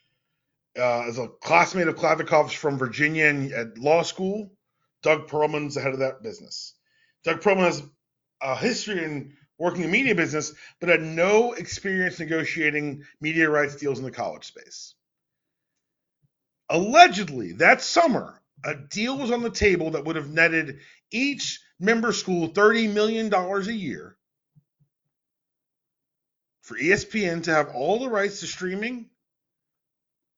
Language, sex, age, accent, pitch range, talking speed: English, male, 40-59, American, 150-200 Hz, 140 wpm